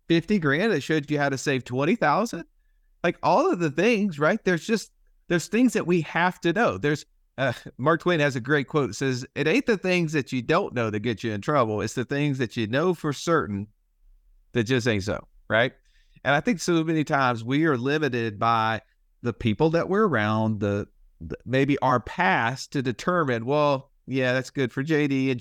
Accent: American